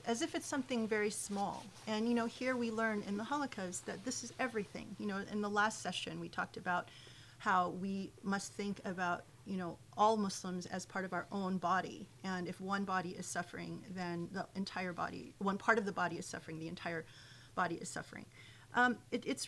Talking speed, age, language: 210 wpm, 30-49, English